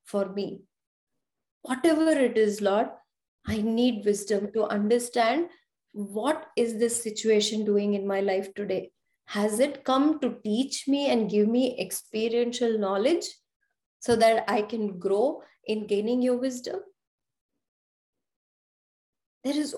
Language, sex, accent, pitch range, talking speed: English, female, Indian, 215-270 Hz, 125 wpm